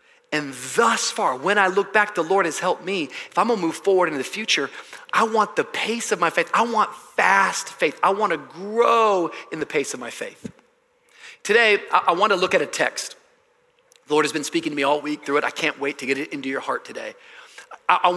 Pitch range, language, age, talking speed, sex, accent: 150-235 Hz, English, 30-49, 230 wpm, male, American